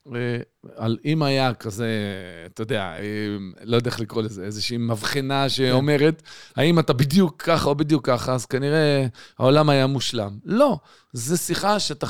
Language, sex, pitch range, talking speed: Hebrew, male, 115-170 Hz, 150 wpm